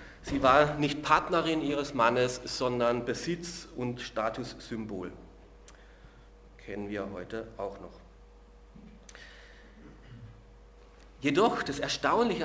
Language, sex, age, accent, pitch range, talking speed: German, male, 40-59, German, 120-190 Hz, 85 wpm